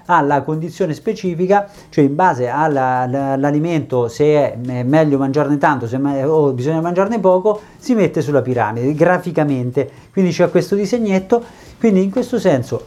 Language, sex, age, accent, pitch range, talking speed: Italian, male, 50-69, native, 130-185 Hz, 145 wpm